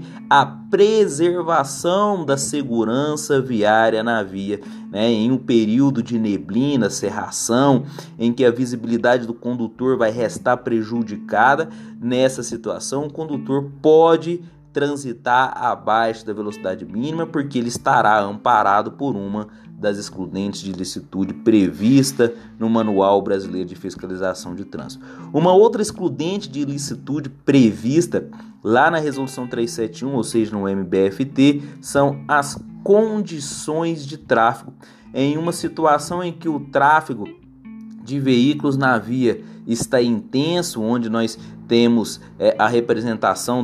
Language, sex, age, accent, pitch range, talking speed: Portuguese, male, 30-49, Brazilian, 110-145 Hz, 120 wpm